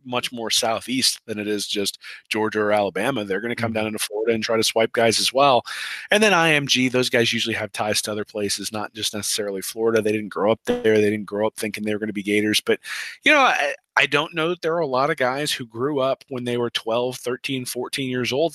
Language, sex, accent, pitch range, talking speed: English, male, American, 110-135 Hz, 260 wpm